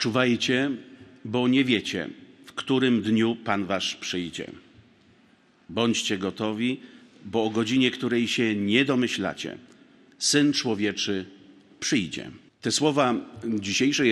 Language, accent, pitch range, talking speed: Polish, native, 100-125 Hz, 105 wpm